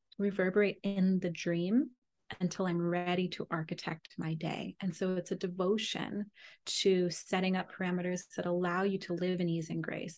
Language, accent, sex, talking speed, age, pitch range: English, American, female, 170 wpm, 30-49, 180-205 Hz